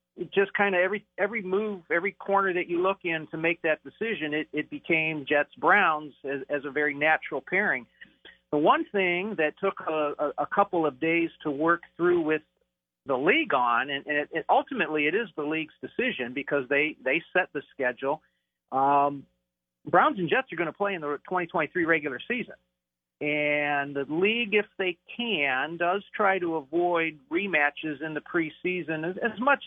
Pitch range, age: 140-175 Hz, 40-59